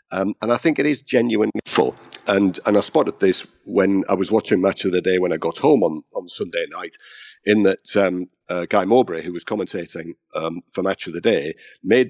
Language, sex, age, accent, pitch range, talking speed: English, male, 50-69, British, 95-120 Hz, 225 wpm